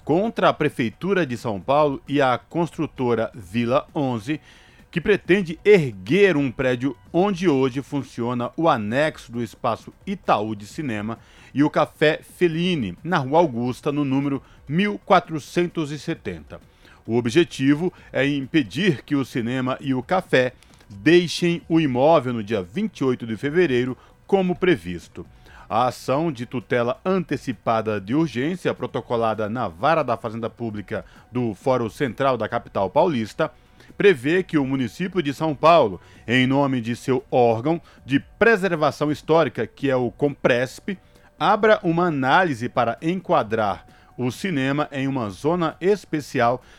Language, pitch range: Portuguese, 120-165 Hz